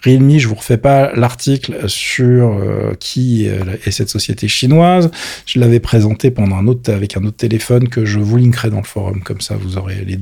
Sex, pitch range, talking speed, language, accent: male, 105-140 Hz, 210 wpm, French, French